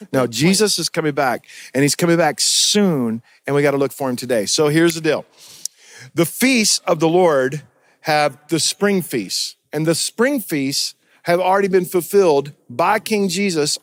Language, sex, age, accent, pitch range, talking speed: English, male, 50-69, American, 150-185 Hz, 180 wpm